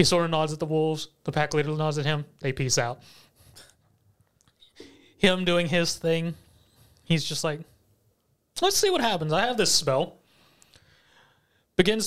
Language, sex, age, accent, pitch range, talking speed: English, male, 20-39, American, 135-165 Hz, 160 wpm